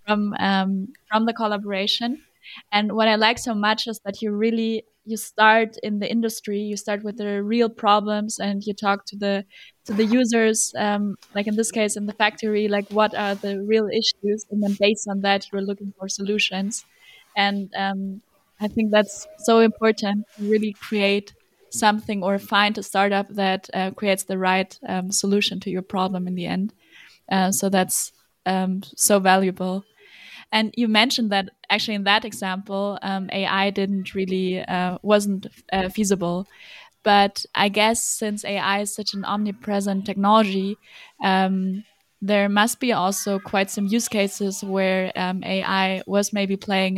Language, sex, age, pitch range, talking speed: English, female, 20-39, 195-215 Hz, 170 wpm